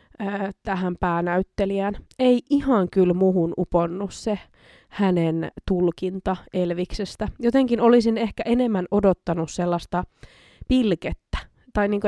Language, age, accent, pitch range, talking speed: Finnish, 20-39, native, 180-215 Hz, 100 wpm